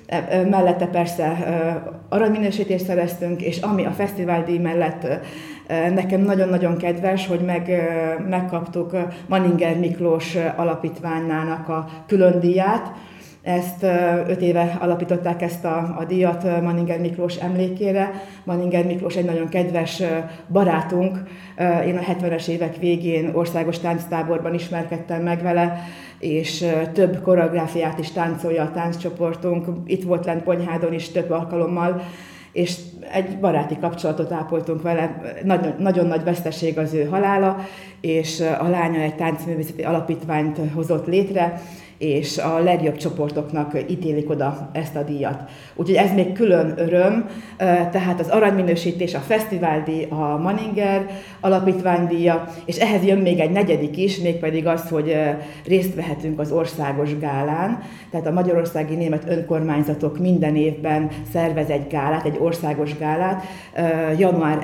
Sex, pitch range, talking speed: female, 160-180 Hz, 125 wpm